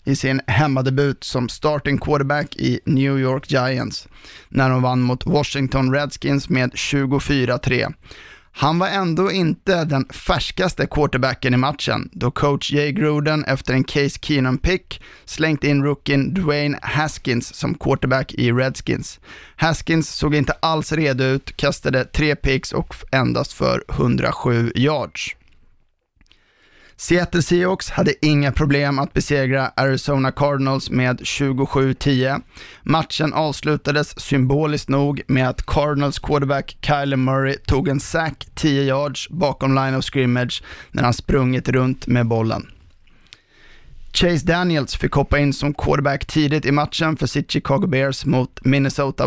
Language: Swedish